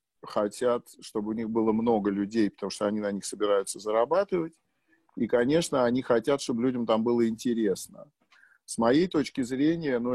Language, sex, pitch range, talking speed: Russian, male, 105-135 Hz, 170 wpm